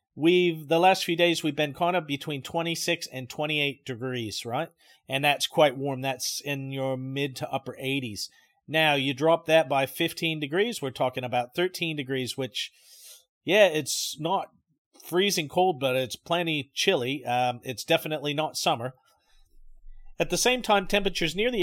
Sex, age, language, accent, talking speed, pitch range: male, 40-59, English, American, 180 wpm, 140-180 Hz